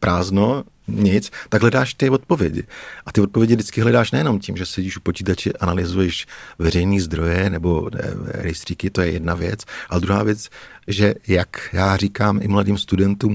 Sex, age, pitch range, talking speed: male, 50-69, 85-105 Hz, 160 wpm